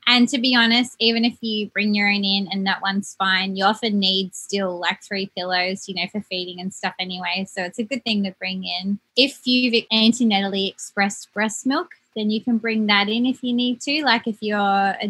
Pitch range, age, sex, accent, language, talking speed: 180-215 Hz, 20-39, female, Australian, English, 225 wpm